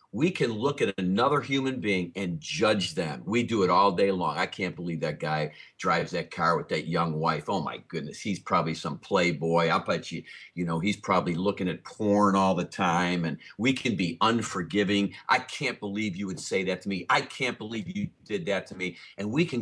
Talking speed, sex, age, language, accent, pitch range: 225 wpm, male, 50-69, English, American, 95-120 Hz